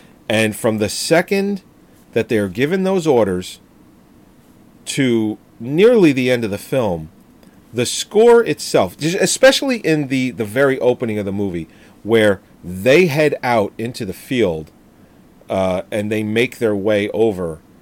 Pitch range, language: 95-120 Hz, English